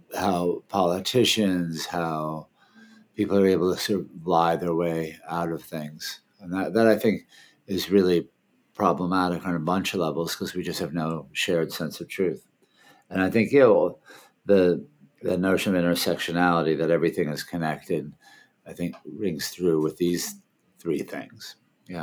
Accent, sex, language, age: American, male, English, 50-69